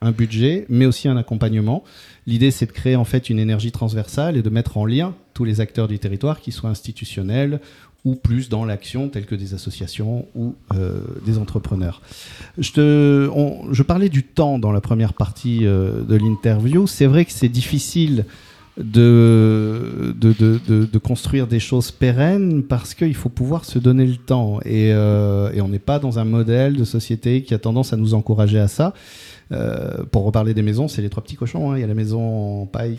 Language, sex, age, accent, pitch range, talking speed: French, male, 40-59, French, 110-135 Hz, 205 wpm